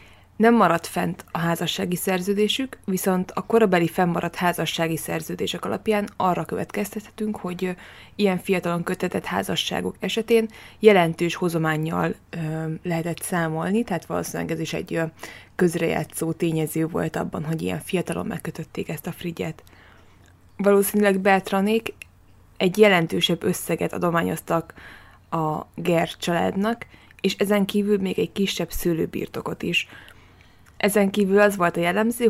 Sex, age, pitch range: female, 20-39, 165-200 Hz